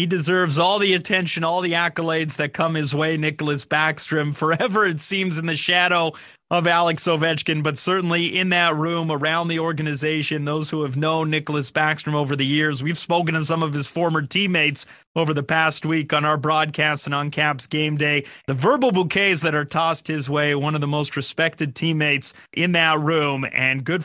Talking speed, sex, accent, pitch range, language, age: 195 wpm, male, American, 150-175 Hz, English, 30-49